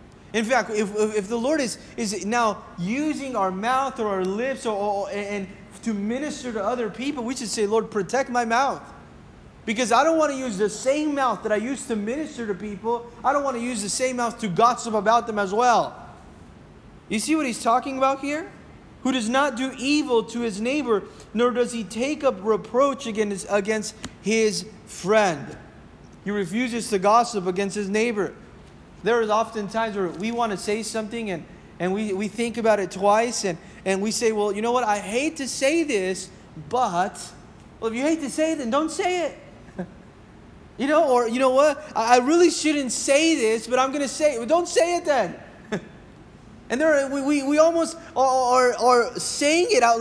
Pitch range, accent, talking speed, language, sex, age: 215-275 Hz, American, 200 wpm, English, male, 30-49